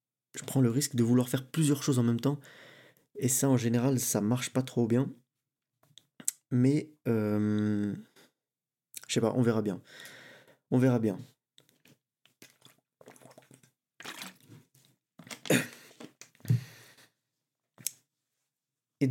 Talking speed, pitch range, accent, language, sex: 105 wpm, 120-135 Hz, French, French, male